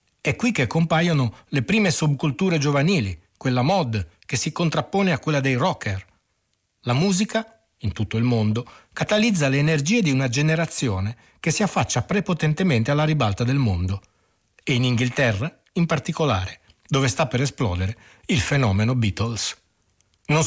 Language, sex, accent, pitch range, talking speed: Italian, male, native, 115-165 Hz, 145 wpm